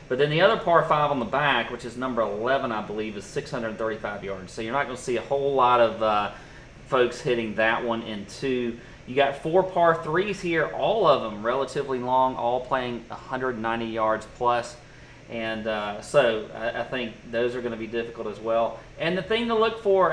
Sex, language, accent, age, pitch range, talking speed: male, English, American, 30-49, 115-150 Hz, 205 wpm